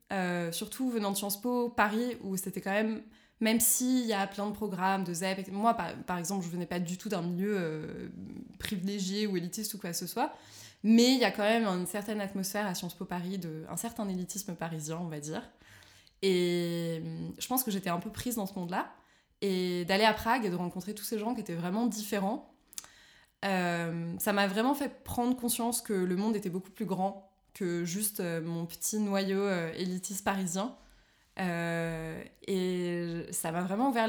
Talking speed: 200 wpm